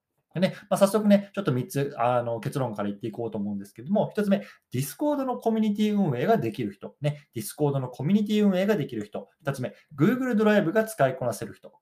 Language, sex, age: Japanese, male, 20-39